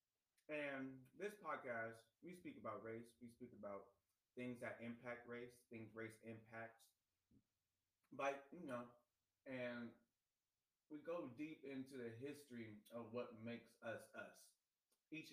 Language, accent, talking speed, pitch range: English, American, 130 wpm, 105-125 Hz